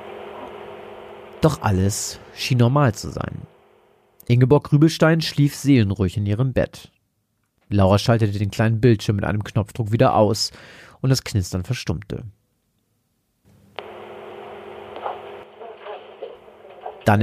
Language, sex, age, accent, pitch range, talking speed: German, male, 40-59, German, 100-130 Hz, 100 wpm